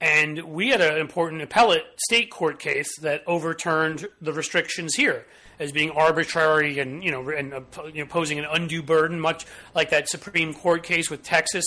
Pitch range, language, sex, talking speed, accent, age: 145-175 Hz, English, male, 180 wpm, American, 30-49